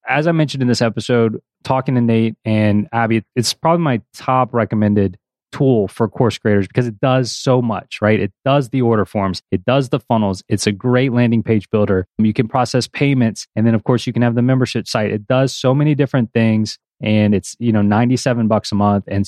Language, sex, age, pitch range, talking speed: English, male, 20-39, 110-135 Hz, 220 wpm